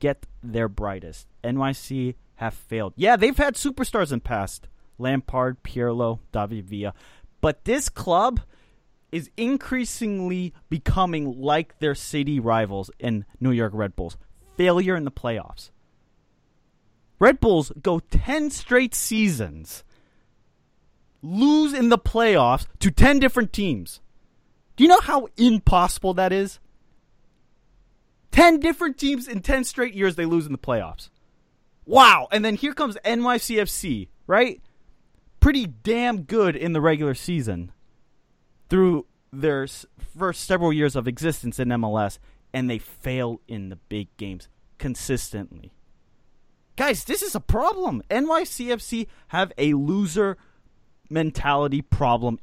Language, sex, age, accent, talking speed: English, male, 30-49, American, 125 wpm